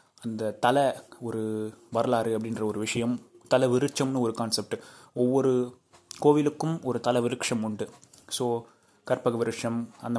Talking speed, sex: 125 wpm, male